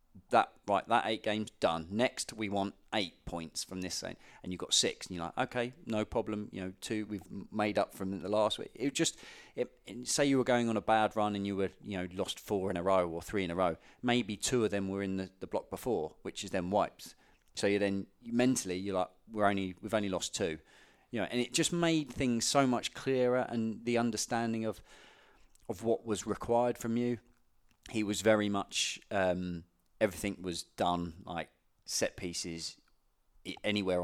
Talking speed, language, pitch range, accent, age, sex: 210 wpm, English, 90-110 Hz, British, 30-49, male